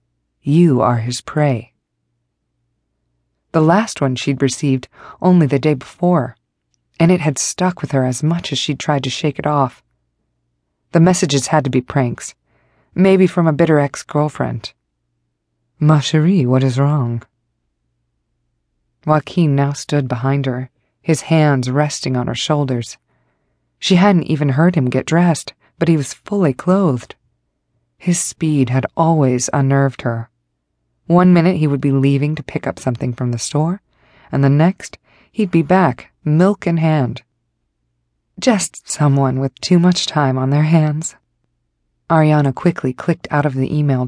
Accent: American